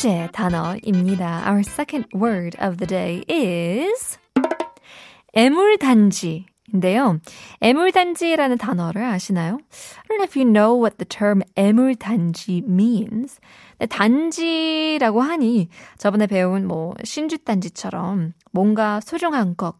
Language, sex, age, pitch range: Korean, female, 20-39, 185-275 Hz